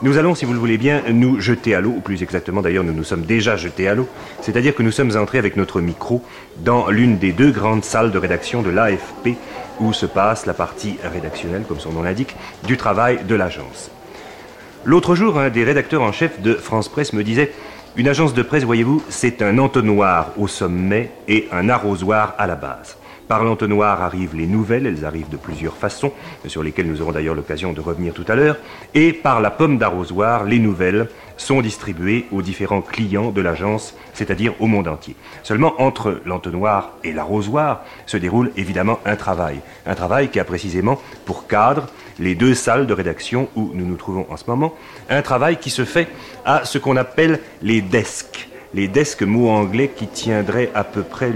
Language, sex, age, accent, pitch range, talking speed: French, male, 40-59, French, 95-125 Hz, 200 wpm